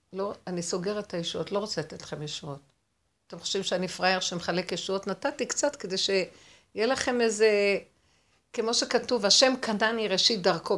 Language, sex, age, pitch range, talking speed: Hebrew, female, 50-69, 195-275 Hz, 160 wpm